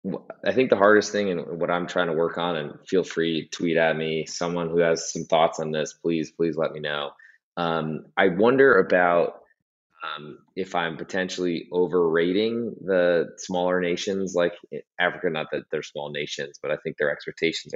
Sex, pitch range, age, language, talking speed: male, 80-90 Hz, 20-39, English, 180 wpm